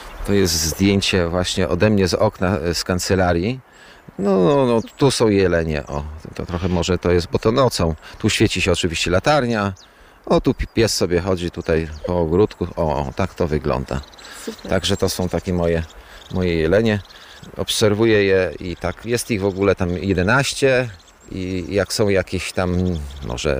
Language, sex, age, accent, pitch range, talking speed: Polish, male, 30-49, native, 85-105 Hz, 170 wpm